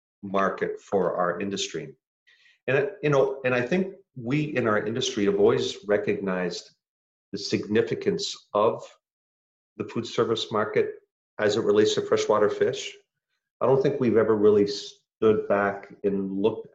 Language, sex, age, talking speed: English, male, 40-59, 145 wpm